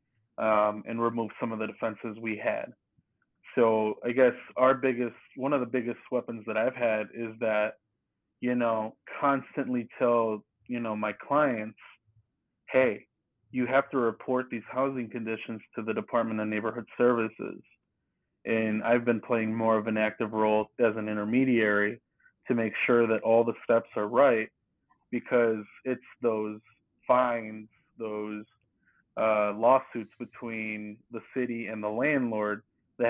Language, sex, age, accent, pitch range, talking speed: English, male, 20-39, American, 110-120 Hz, 145 wpm